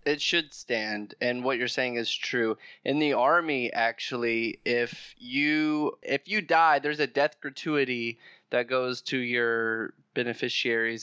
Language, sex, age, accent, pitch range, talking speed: English, male, 20-39, American, 115-135 Hz, 145 wpm